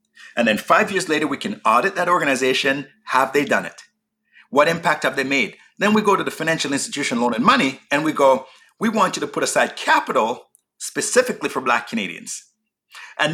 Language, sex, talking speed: English, male, 200 wpm